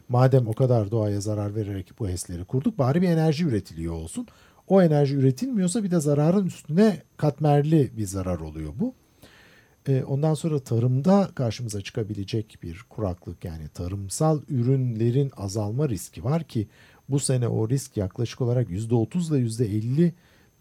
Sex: male